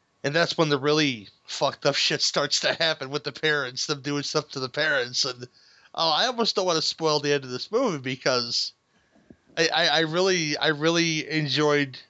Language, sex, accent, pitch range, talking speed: English, male, American, 135-160 Hz, 210 wpm